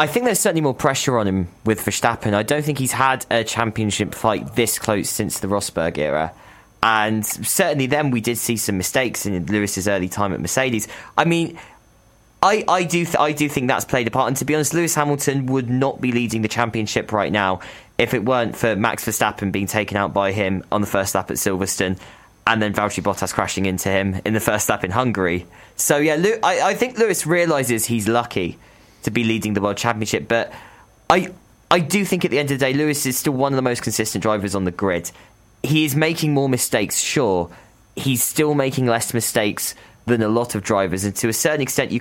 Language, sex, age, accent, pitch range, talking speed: English, male, 10-29, British, 100-135 Hz, 225 wpm